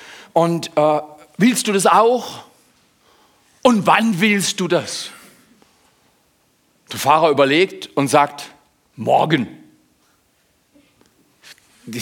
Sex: male